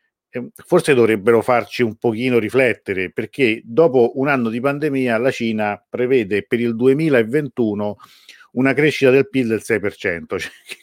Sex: male